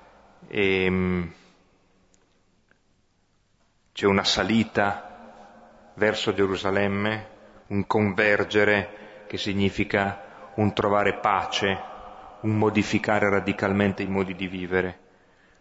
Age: 30-49